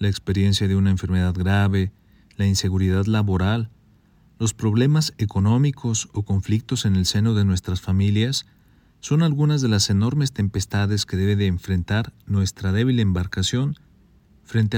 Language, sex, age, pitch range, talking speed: Spanish, male, 40-59, 95-120 Hz, 140 wpm